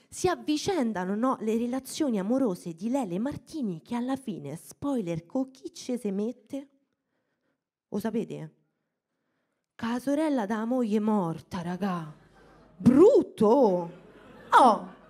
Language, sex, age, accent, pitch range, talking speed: Italian, female, 20-39, native, 185-255 Hz, 115 wpm